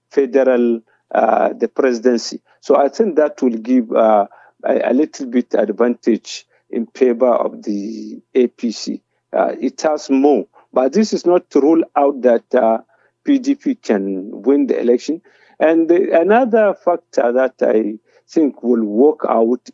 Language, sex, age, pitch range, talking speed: English, male, 50-69, 120-160 Hz, 145 wpm